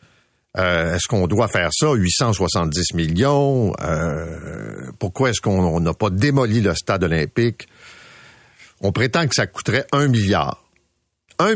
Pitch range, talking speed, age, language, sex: 95-135 Hz, 135 wpm, 50-69, French, male